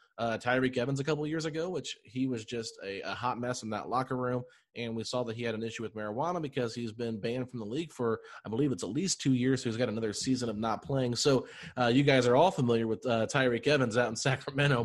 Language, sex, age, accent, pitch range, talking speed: English, male, 30-49, American, 120-145 Hz, 265 wpm